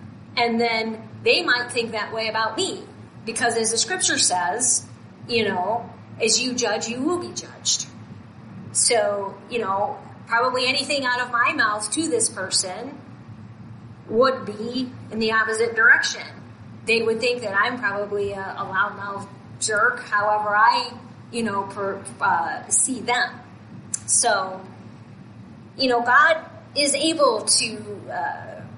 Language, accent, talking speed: English, American, 140 wpm